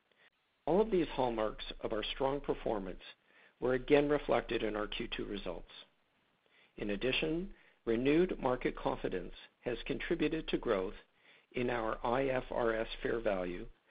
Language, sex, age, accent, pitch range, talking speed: English, male, 50-69, American, 110-145 Hz, 125 wpm